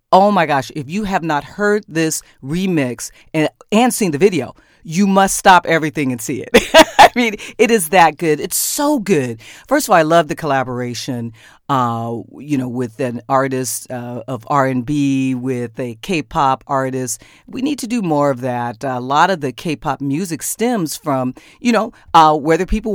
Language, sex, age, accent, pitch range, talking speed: English, female, 40-59, American, 130-180 Hz, 195 wpm